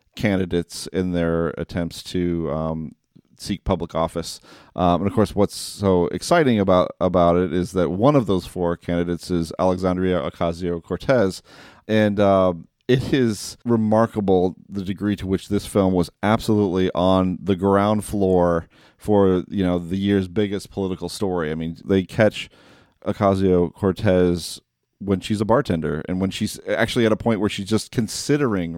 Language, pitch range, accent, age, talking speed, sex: English, 90-105 Hz, American, 30-49, 155 wpm, male